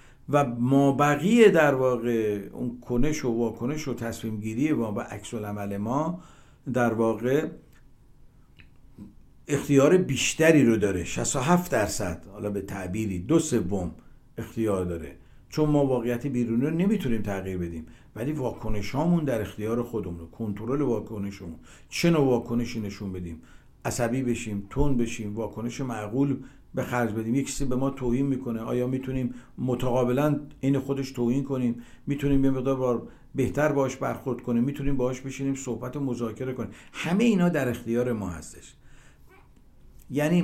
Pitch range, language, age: 115-140 Hz, Persian, 60-79